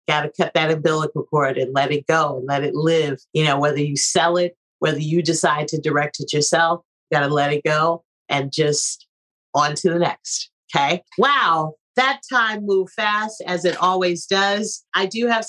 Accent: American